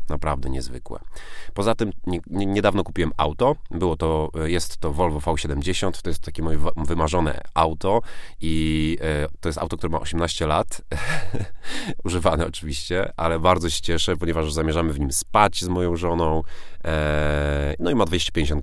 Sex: male